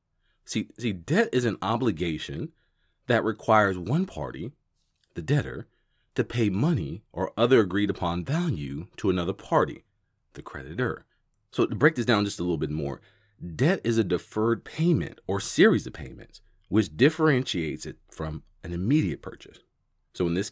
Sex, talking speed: male, 160 wpm